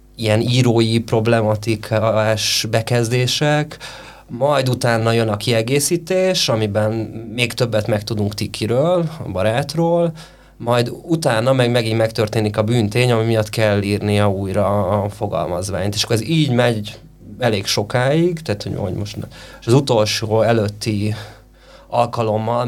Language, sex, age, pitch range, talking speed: Hungarian, male, 30-49, 105-125 Hz, 120 wpm